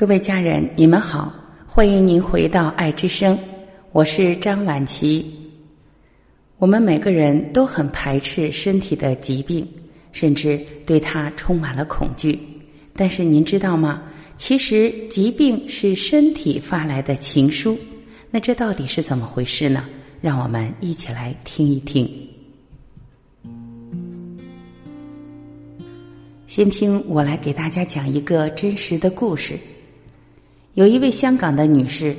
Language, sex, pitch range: Chinese, female, 145-195 Hz